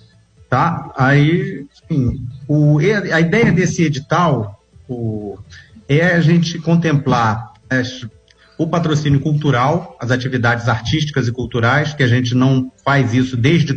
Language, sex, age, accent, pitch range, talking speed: Portuguese, male, 40-59, Brazilian, 120-150 Hz, 125 wpm